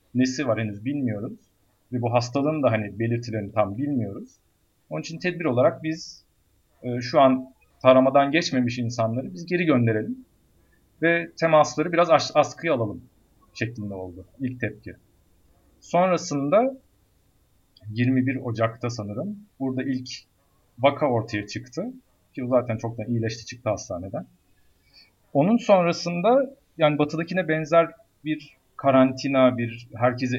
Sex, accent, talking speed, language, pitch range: male, native, 120 wpm, Turkish, 110-145 Hz